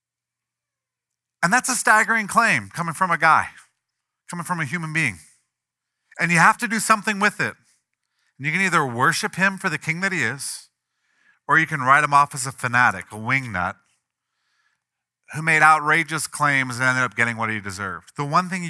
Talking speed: 190 wpm